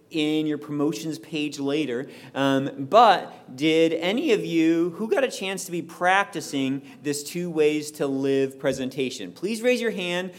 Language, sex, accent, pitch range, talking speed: English, male, American, 140-185 Hz, 160 wpm